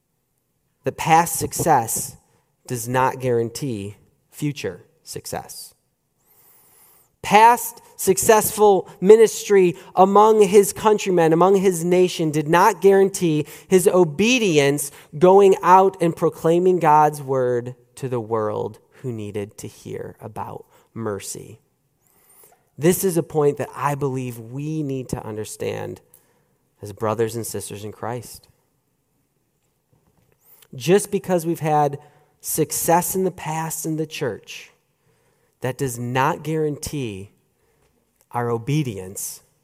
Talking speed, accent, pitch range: 105 wpm, American, 120-170 Hz